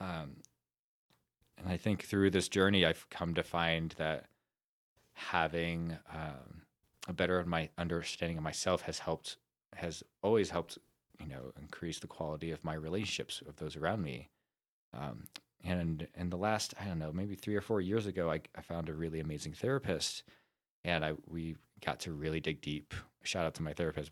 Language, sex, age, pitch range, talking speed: English, male, 20-39, 80-95 Hz, 180 wpm